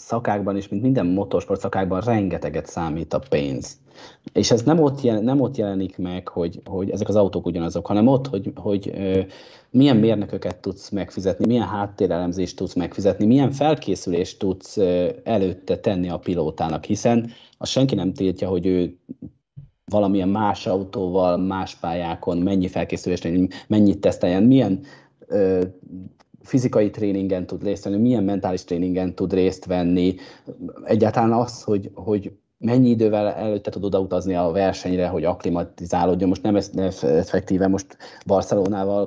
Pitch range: 90-105 Hz